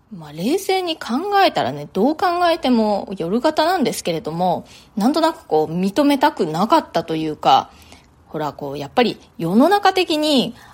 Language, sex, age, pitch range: Japanese, female, 20-39, 185-295 Hz